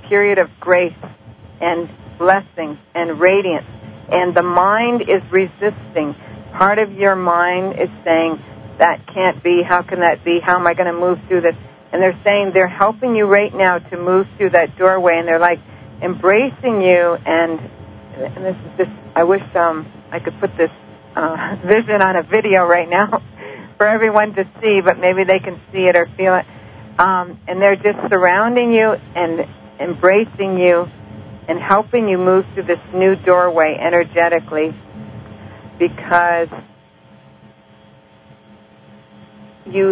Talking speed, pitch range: 155 wpm, 160-190 Hz